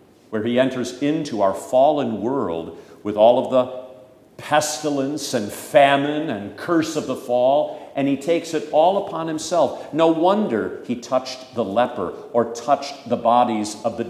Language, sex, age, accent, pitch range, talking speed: English, male, 50-69, American, 115-155 Hz, 160 wpm